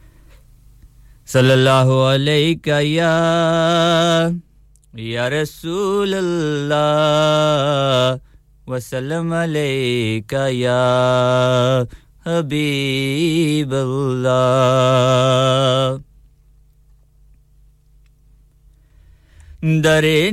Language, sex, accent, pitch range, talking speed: English, male, Indian, 140-185 Hz, 30 wpm